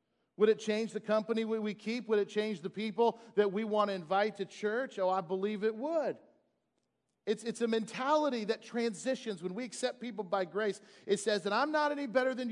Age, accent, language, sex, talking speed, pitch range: 40-59, American, English, male, 210 wpm, 180-230 Hz